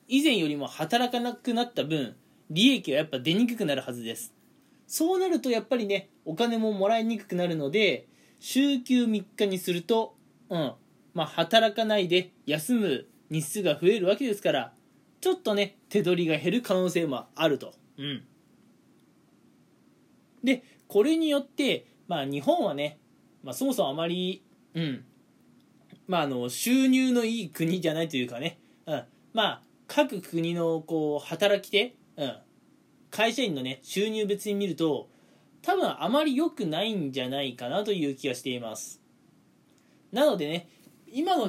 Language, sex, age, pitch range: Japanese, male, 20-39, 155-240 Hz